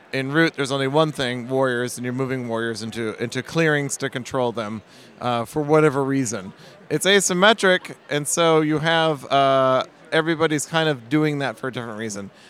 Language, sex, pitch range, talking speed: English, male, 125-165 Hz, 180 wpm